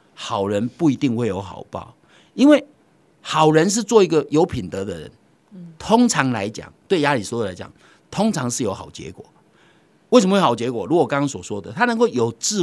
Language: Chinese